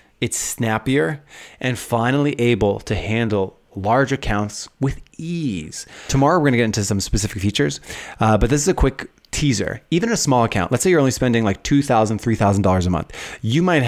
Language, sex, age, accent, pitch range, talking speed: English, male, 20-39, American, 100-130 Hz, 185 wpm